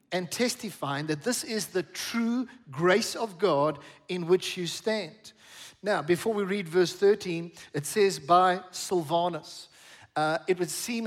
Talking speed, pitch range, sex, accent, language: 150 wpm, 170-215 Hz, male, South African, English